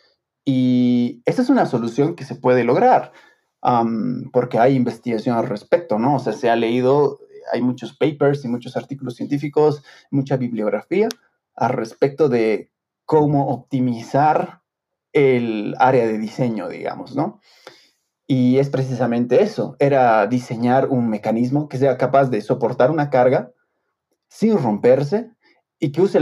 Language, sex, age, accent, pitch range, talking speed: Spanish, male, 30-49, Mexican, 125-145 Hz, 140 wpm